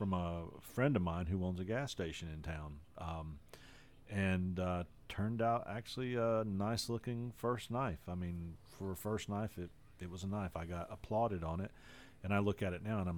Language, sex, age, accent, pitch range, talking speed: English, male, 40-59, American, 85-110 Hz, 215 wpm